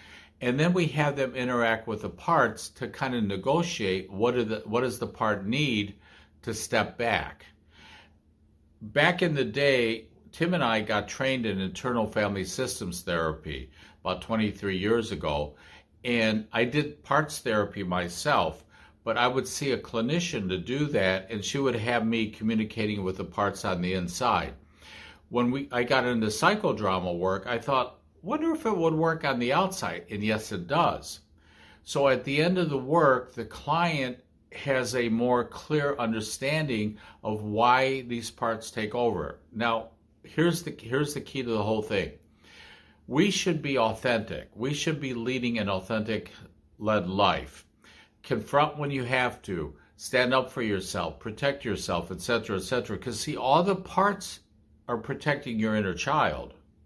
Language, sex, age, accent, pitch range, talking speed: English, male, 50-69, American, 100-135 Hz, 165 wpm